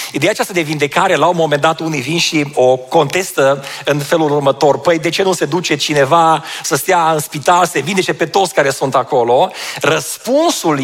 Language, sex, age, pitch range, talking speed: Romanian, male, 40-59, 145-195 Hz, 195 wpm